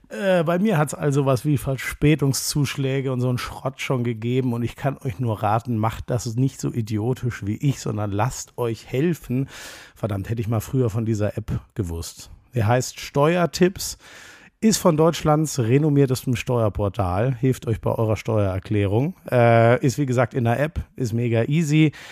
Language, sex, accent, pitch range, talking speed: German, male, German, 115-140 Hz, 175 wpm